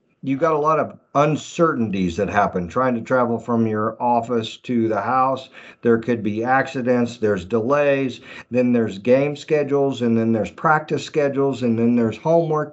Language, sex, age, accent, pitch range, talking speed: English, male, 50-69, American, 115-145 Hz, 170 wpm